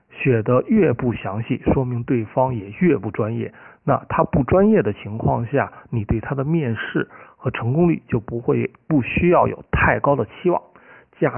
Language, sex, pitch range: Chinese, male, 115-155 Hz